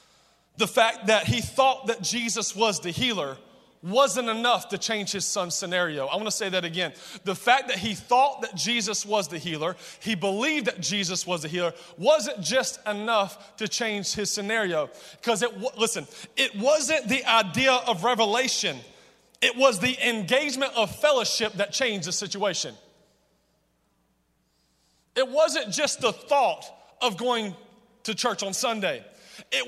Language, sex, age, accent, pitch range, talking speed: English, male, 30-49, American, 200-265 Hz, 160 wpm